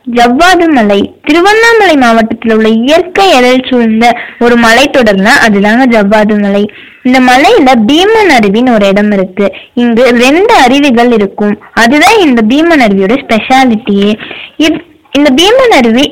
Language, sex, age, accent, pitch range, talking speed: Tamil, female, 20-39, native, 220-300 Hz, 120 wpm